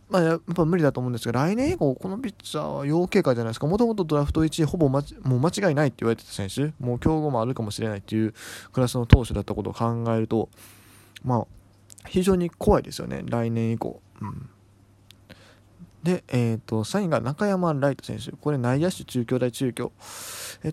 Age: 20-39